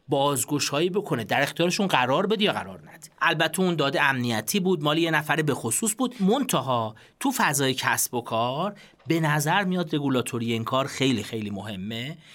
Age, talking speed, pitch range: 40-59, 175 wpm, 125-185 Hz